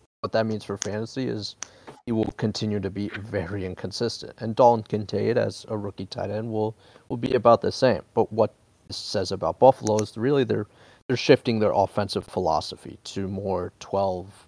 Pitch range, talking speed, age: 100-115 Hz, 180 wpm, 30-49